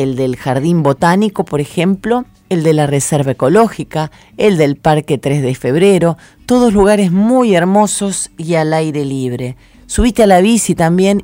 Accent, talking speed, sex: Argentinian, 160 wpm, female